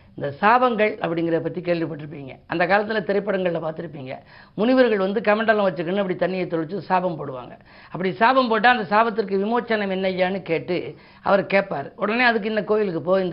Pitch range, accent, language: 175-220 Hz, native, Tamil